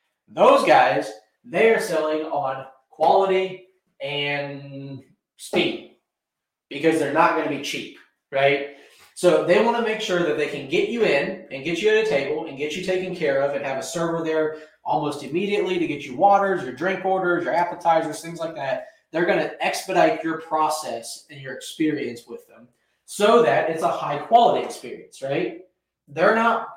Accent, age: American, 20-39